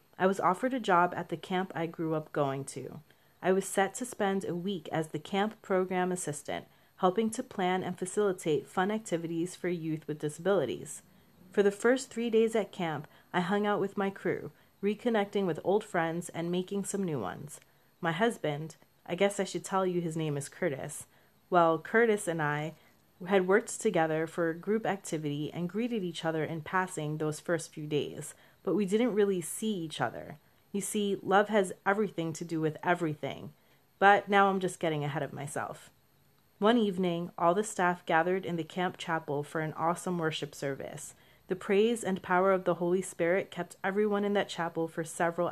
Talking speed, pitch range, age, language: 190 wpm, 160-200 Hz, 30-49, English